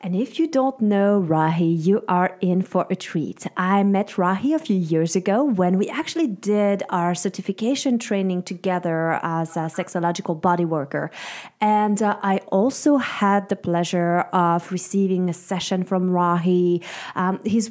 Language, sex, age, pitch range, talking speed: English, female, 30-49, 180-215 Hz, 160 wpm